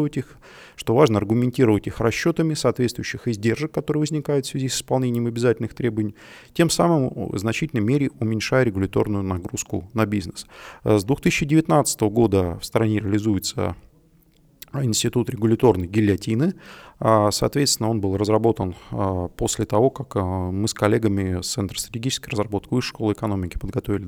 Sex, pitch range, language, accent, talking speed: male, 100-130 Hz, Russian, native, 130 wpm